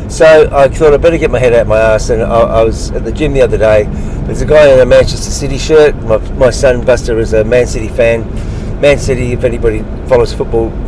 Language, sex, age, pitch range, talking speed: English, male, 50-69, 115-145 Hz, 245 wpm